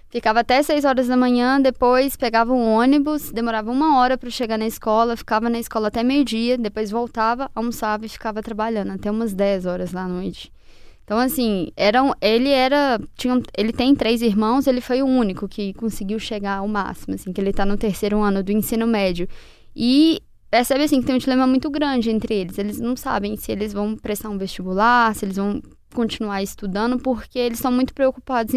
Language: Portuguese